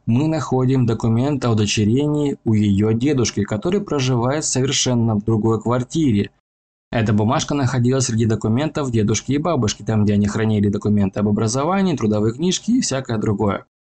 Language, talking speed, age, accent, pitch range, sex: Russian, 150 wpm, 20-39, native, 110-135 Hz, male